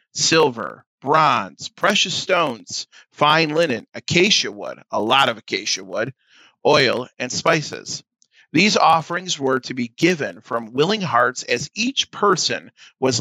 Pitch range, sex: 125-165 Hz, male